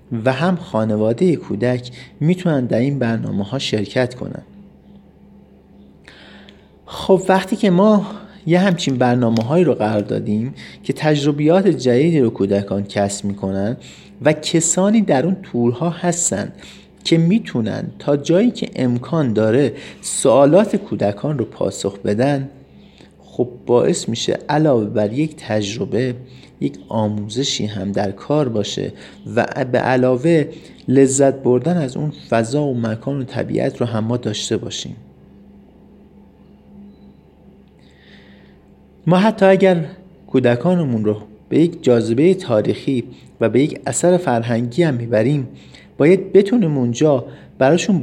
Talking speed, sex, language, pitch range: 120 wpm, male, Persian, 110-170 Hz